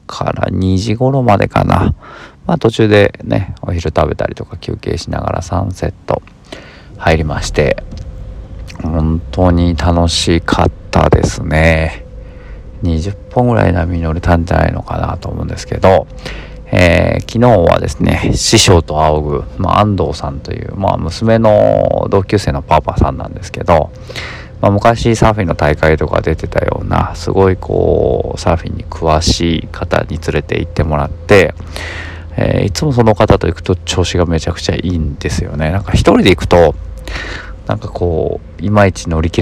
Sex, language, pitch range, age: male, Japanese, 80-100 Hz, 40-59